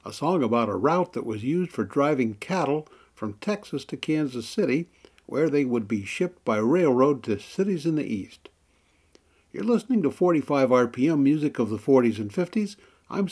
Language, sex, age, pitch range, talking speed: English, male, 60-79, 115-175 Hz, 180 wpm